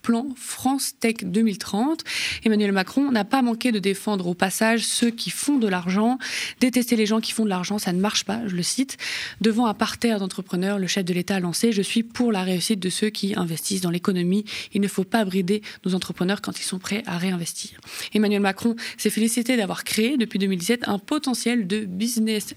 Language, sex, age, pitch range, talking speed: French, female, 20-39, 190-235 Hz, 205 wpm